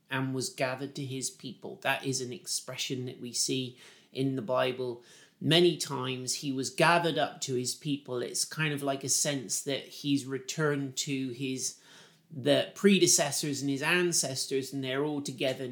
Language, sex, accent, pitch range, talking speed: English, male, British, 125-150 Hz, 170 wpm